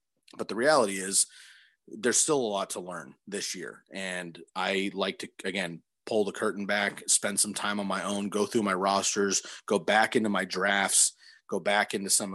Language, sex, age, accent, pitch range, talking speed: English, male, 30-49, American, 100-125 Hz, 195 wpm